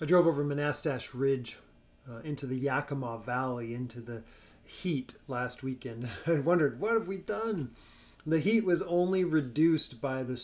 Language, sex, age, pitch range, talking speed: English, male, 30-49, 125-155 Hz, 160 wpm